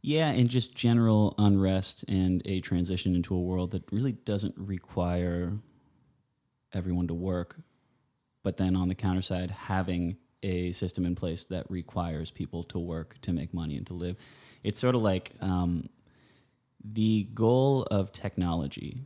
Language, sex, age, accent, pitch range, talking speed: English, male, 20-39, American, 90-105 Hz, 155 wpm